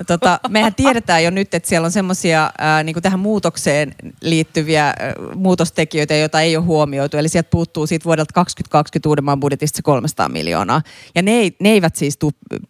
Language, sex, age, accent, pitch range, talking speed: Finnish, female, 30-49, native, 150-180 Hz, 165 wpm